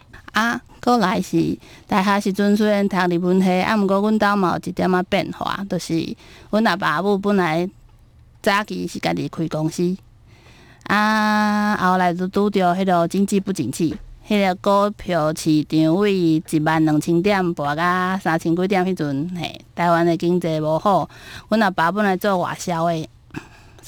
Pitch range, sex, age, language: 160-205 Hz, female, 20-39, Chinese